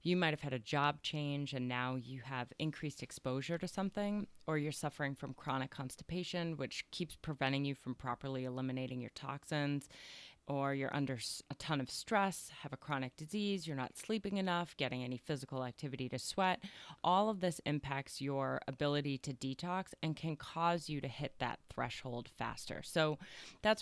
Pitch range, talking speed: 130-160 Hz, 175 wpm